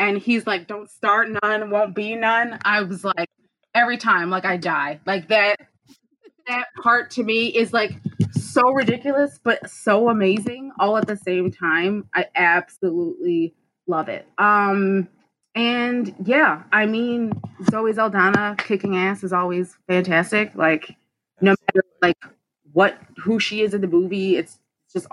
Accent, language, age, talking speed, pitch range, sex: American, English, 20-39, 155 wpm, 190-235 Hz, female